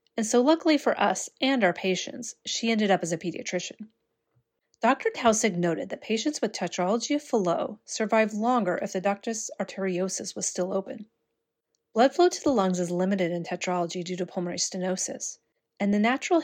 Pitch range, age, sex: 185-240 Hz, 30-49, female